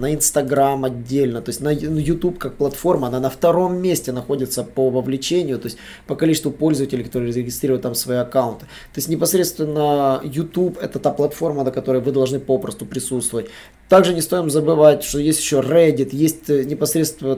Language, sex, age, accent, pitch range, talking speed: Russian, male, 20-39, native, 125-155 Hz, 165 wpm